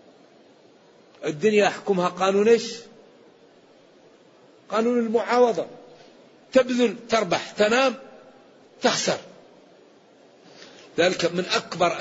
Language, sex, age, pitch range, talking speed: Arabic, male, 40-59, 150-205 Hz, 60 wpm